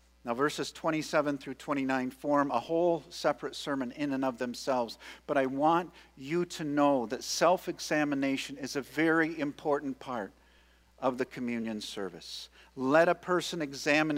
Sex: male